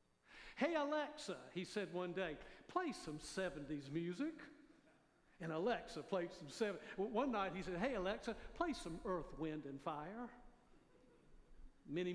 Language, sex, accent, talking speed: English, male, American, 140 wpm